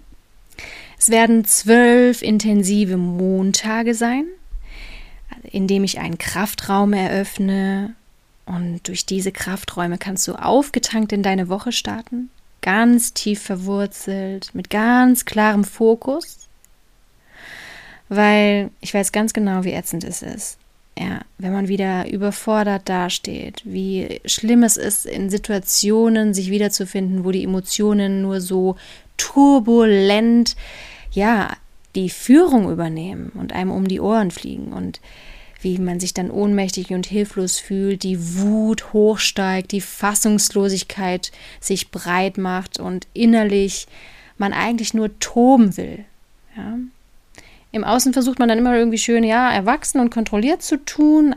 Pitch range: 190-230 Hz